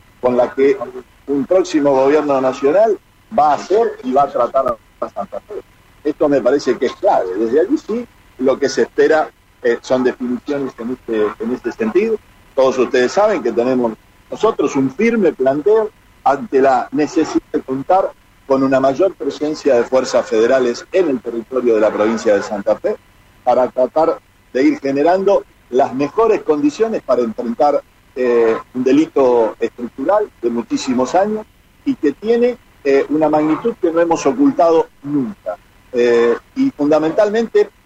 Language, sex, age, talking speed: Spanish, male, 50-69, 155 wpm